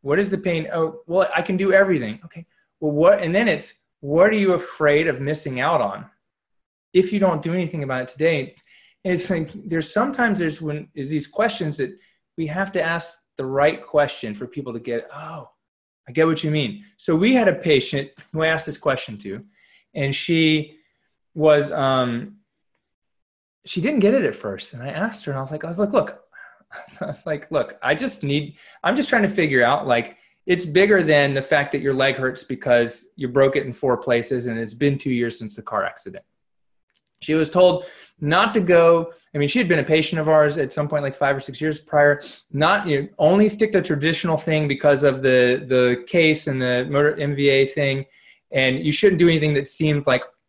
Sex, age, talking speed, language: male, 20-39, 220 wpm, English